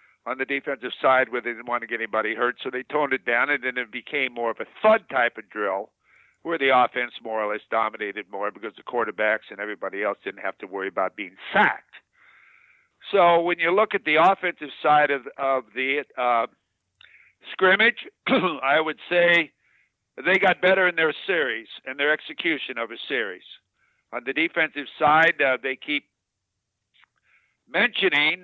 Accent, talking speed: American, 180 wpm